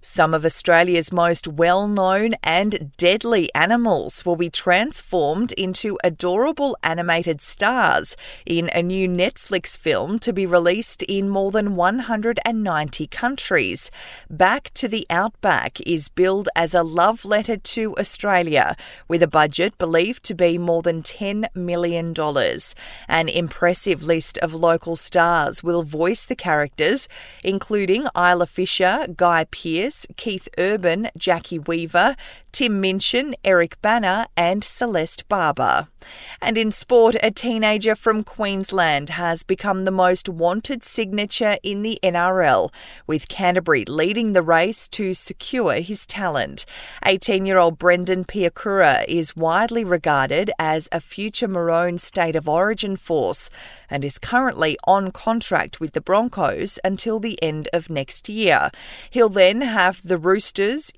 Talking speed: 130 wpm